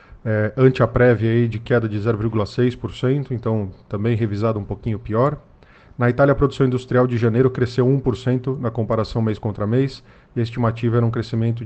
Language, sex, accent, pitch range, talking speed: Portuguese, male, Brazilian, 115-130 Hz, 175 wpm